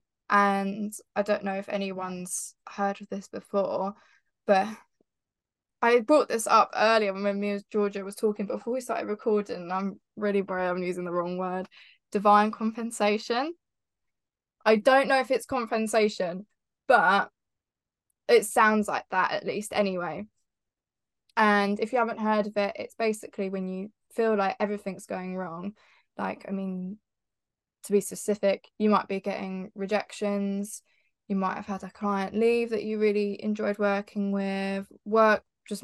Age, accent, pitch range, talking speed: 10-29, British, 195-215 Hz, 155 wpm